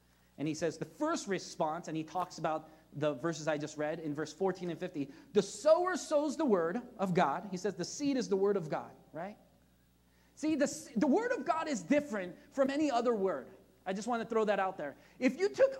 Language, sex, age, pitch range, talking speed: English, male, 30-49, 170-275 Hz, 230 wpm